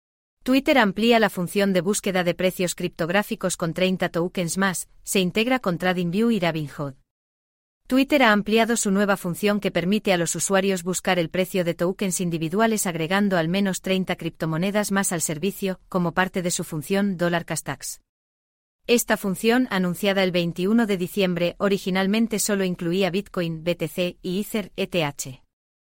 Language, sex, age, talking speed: Spanish, female, 30-49, 155 wpm